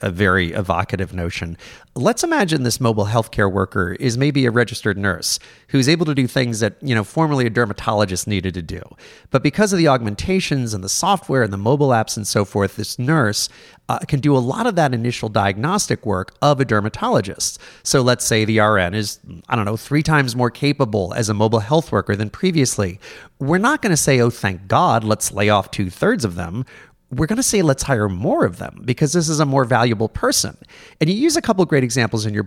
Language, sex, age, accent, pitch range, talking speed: English, male, 30-49, American, 105-150 Hz, 220 wpm